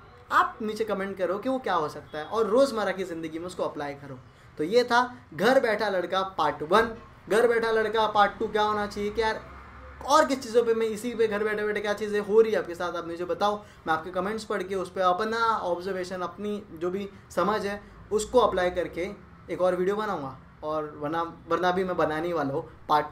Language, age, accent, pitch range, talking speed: Hindi, 20-39, native, 160-205 Hz, 220 wpm